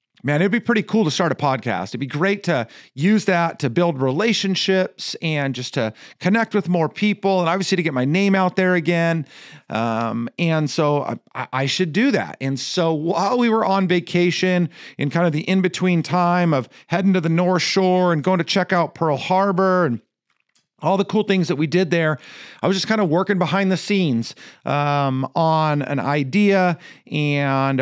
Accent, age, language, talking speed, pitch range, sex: American, 40-59, English, 195 wpm, 145-185 Hz, male